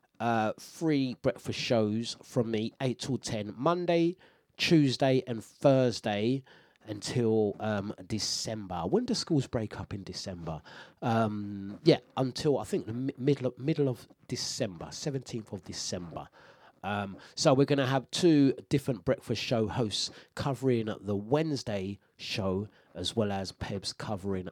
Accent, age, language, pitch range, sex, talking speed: British, 30-49, English, 95-140 Hz, male, 130 wpm